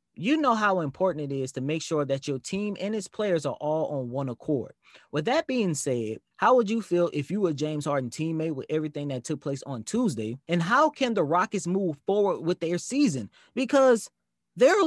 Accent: American